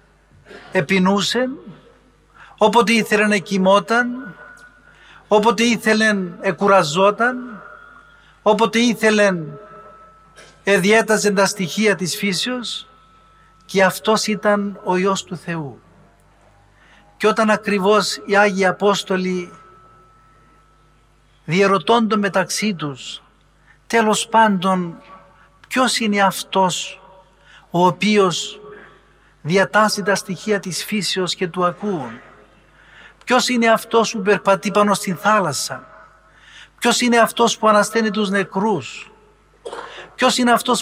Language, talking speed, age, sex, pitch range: Greek, 95 wpm, 60-79, male, 185-215 Hz